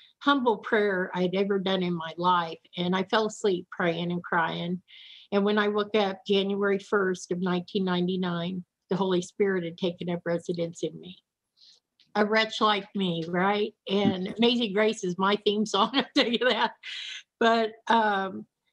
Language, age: English, 50-69